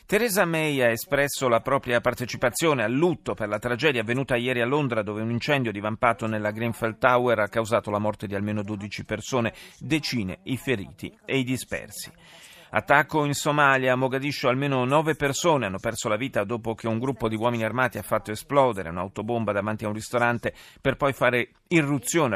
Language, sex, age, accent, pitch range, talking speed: Italian, male, 40-59, native, 110-135 Hz, 185 wpm